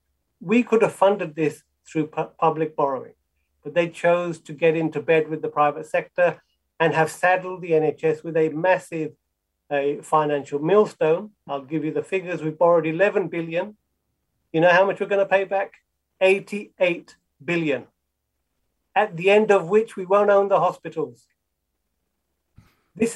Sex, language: male, English